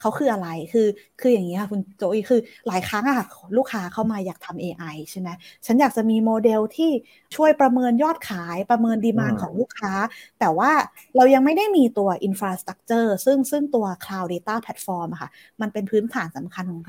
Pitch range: 185-245 Hz